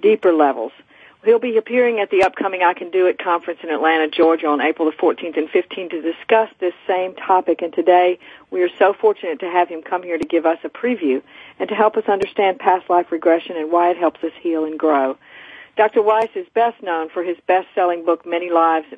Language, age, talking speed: English, 50-69, 220 wpm